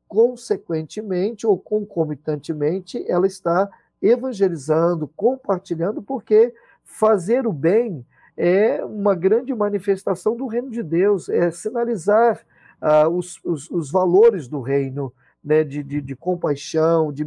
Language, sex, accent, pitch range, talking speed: Portuguese, male, Brazilian, 150-200 Hz, 115 wpm